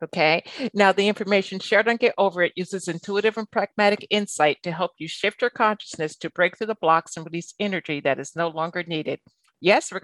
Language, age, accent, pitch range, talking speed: English, 50-69, American, 155-195 Hz, 210 wpm